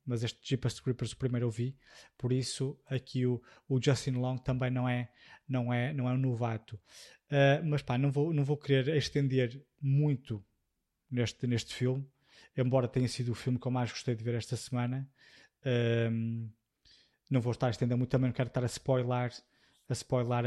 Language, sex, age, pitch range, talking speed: Portuguese, male, 20-39, 125-150 Hz, 190 wpm